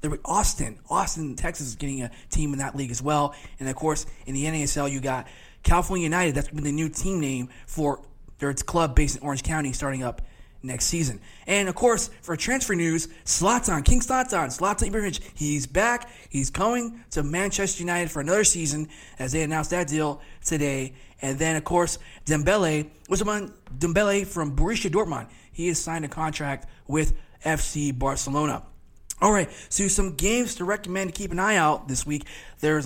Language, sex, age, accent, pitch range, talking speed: English, male, 20-39, American, 145-180 Hz, 175 wpm